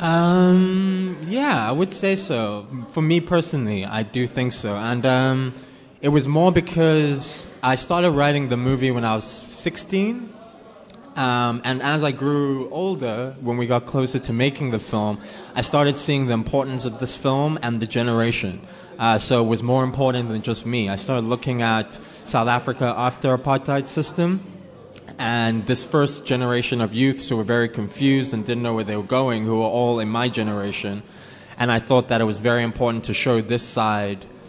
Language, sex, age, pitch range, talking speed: Spanish, male, 20-39, 110-135 Hz, 185 wpm